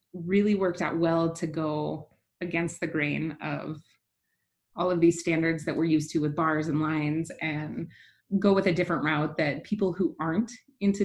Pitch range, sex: 160-190 Hz, female